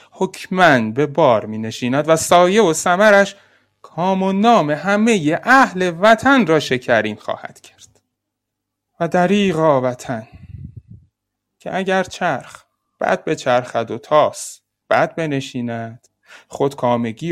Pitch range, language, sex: 130-200 Hz, Persian, male